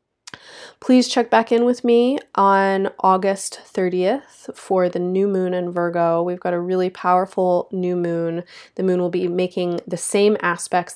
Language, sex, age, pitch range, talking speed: English, female, 20-39, 165-190 Hz, 165 wpm